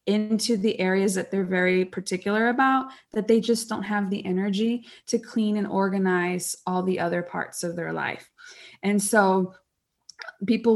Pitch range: 195-240 Hz